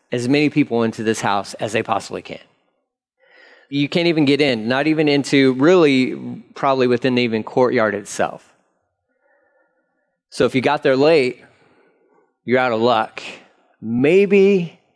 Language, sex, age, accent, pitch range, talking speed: English, male, 40-59, American, 130-160 Hz, 140 wpm